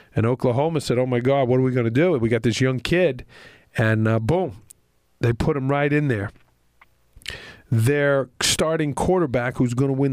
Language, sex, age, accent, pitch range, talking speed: English, male, 40-59, American, 120-150 Hz, 195 wpm